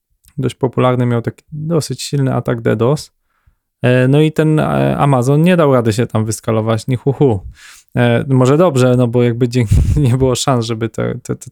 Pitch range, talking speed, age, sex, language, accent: 115-140 Hz, 160 wpm, 20-39, male, Polish, native